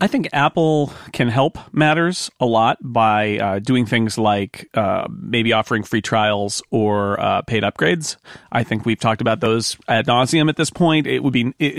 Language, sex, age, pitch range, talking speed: English, male, 40-59, 110-135 Hz, 185 wpm